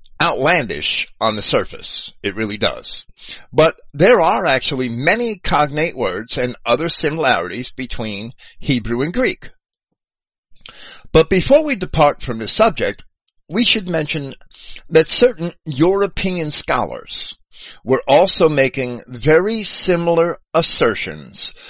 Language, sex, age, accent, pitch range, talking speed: English, male, 50-69, American, 110-170 Hz, 115 wpm